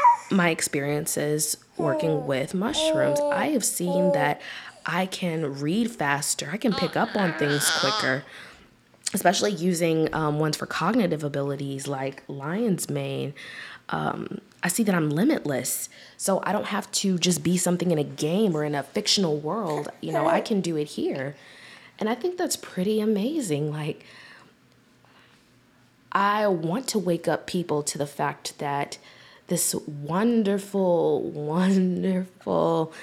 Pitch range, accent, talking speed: 150-190 Hz, American, 145 wpm